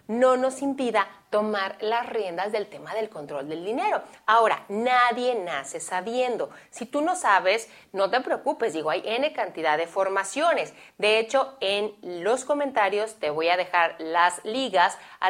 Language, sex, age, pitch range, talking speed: Spanish, female, 30-49, 195-260 Hz, 160 wpm